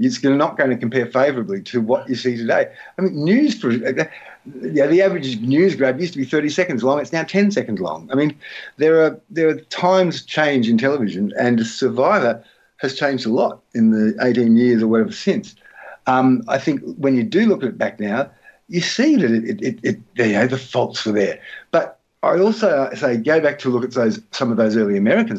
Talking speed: 220 wpm